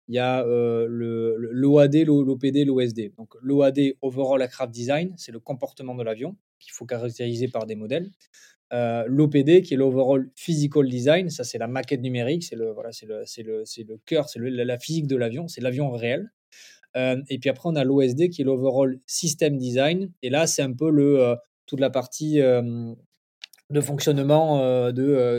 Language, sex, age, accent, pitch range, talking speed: French, male, 20-39, French, 125-150 Hz, 195 wpm